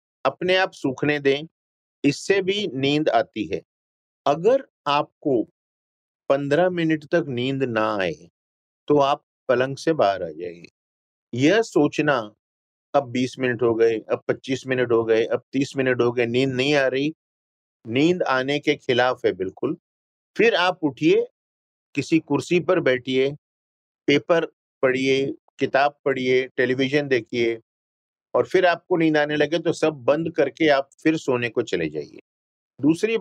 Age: 50-69